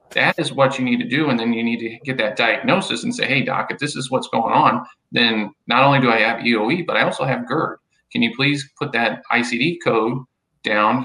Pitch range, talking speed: 115-130 Hz, 245 wpm